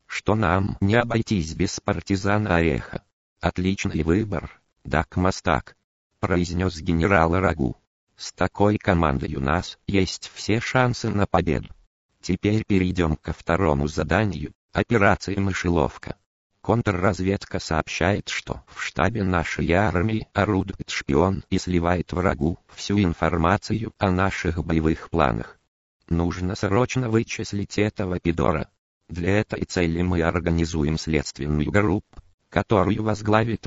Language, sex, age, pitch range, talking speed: Russian, male, 50-69, 85-100 Hz, 110 wpm